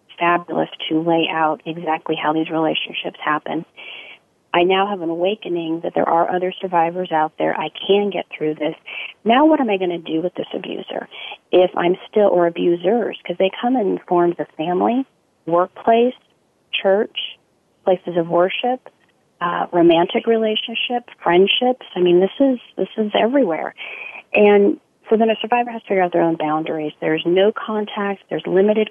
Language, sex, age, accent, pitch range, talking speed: English, female, 40-59, American, 170-215 Hz, 170 wpm